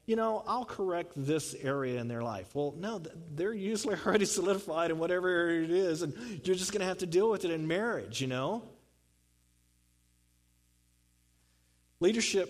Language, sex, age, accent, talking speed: English, male, 40-59, American, 170 wpm